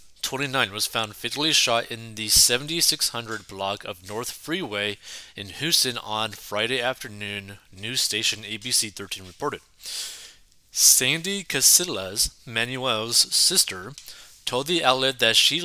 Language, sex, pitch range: English, male, 105-135 Hz